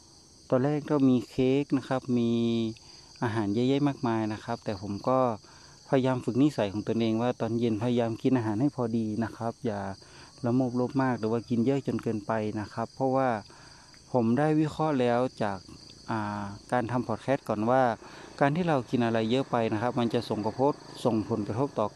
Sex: male